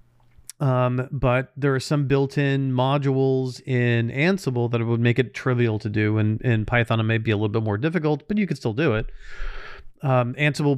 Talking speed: 205 wpm